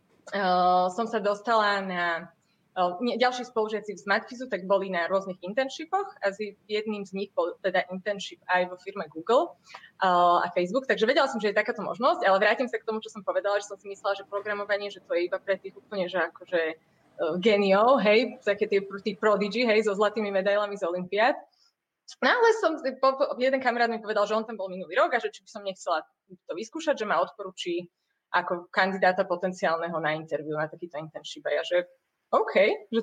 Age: 20-39